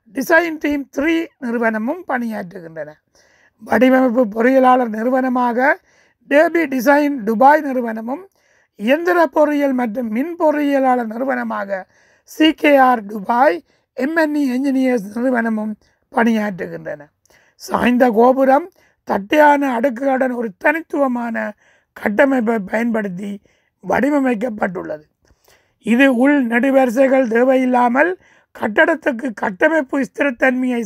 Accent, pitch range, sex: native, 230-285 Hz, male